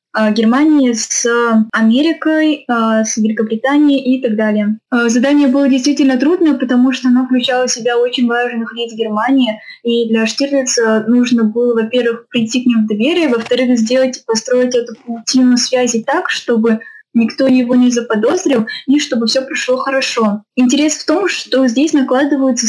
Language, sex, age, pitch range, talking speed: Russian, female, 10-29, 225-260 Hz, 150 wpm